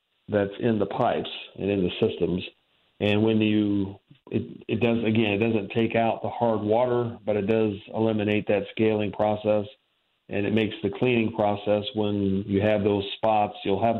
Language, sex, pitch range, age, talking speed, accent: English, male, 100-115 Hz, 40-59, 180 wpm, American